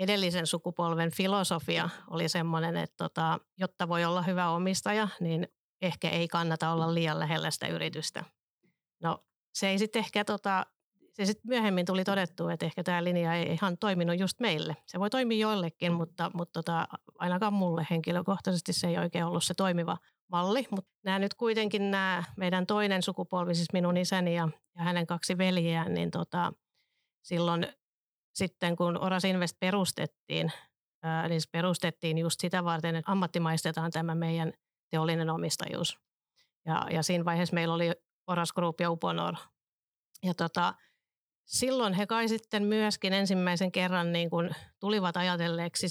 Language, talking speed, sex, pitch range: Finnish, 150 wpm, female, 170-190 Hz